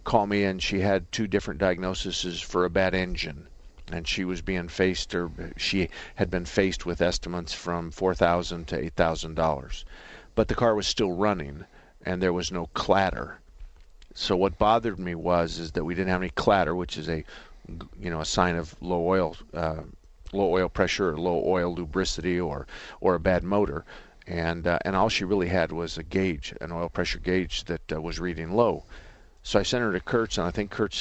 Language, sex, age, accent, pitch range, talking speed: English, male, 50-69, American, 85-95 Hz, 205 wpm